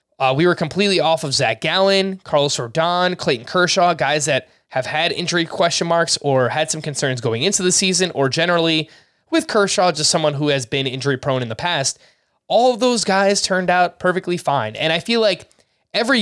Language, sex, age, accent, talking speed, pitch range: English, male, 20-39, American, 200 wpm, 140-185 Hz